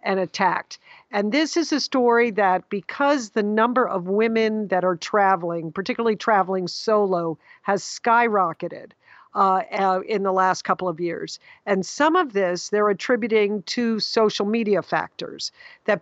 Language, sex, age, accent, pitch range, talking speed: English, female, 50-69, American, 190-230 Hz, 145 wpm